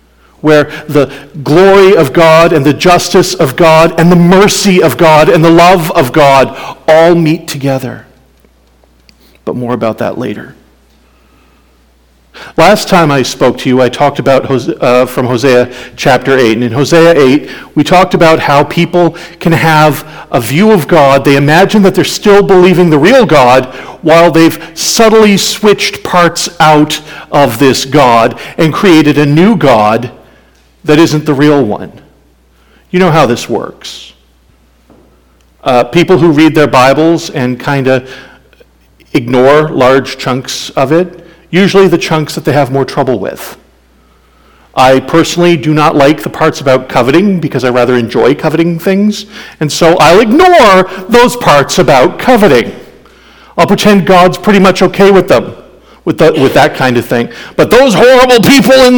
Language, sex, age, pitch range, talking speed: English, male, 50-69, 130-175 Hz, 155 wpm